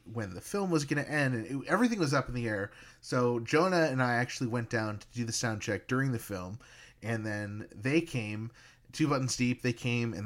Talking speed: 230 wpm